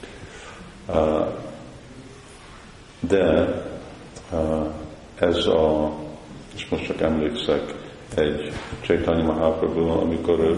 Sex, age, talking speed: male, 50-69, 85 wpm